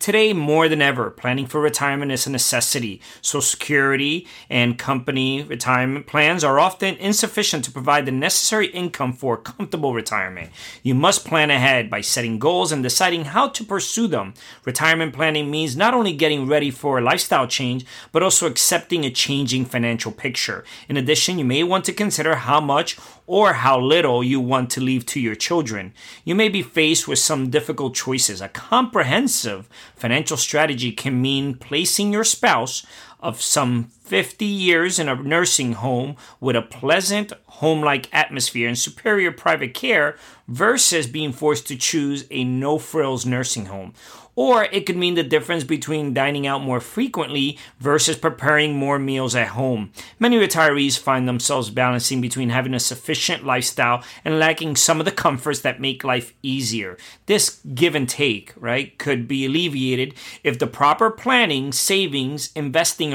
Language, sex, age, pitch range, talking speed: English, male, 30-49, 125-160 Hz, 165 wpm